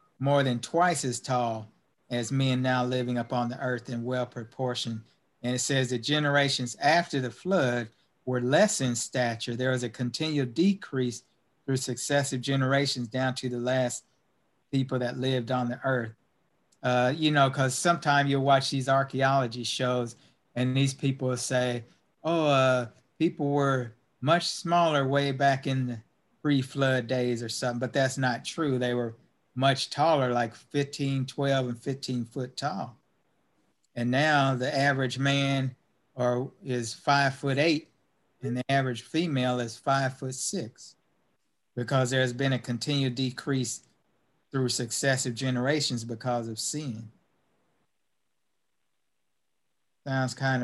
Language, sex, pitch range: English, male, 125-140 Hz